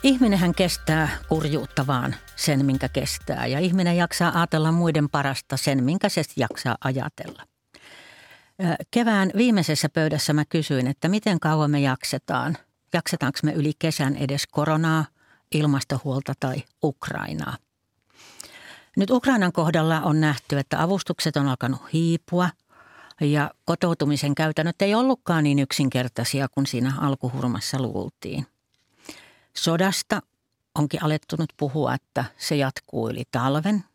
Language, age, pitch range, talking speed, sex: Finnish, 60-79, 140-175 Hz, 120 wpm, female